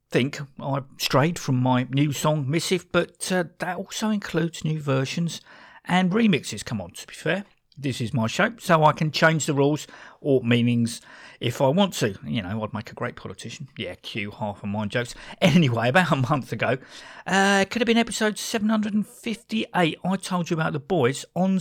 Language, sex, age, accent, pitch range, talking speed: English, male, 50-69, British, 120-180 Hz, 190 wpm